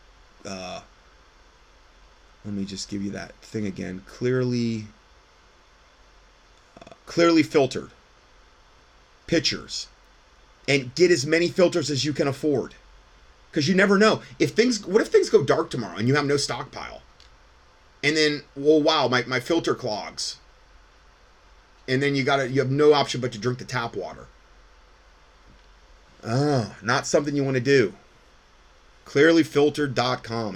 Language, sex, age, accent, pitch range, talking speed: English, male, 30-49, American, 100-140 Hz, 140 wpm